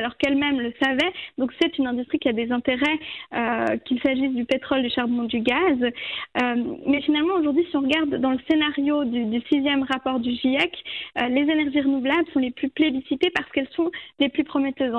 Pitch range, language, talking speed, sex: 260-300 Hz, French, 205 wpm, female